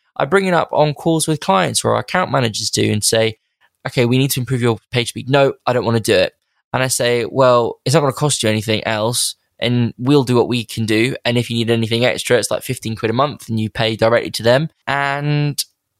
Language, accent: English, British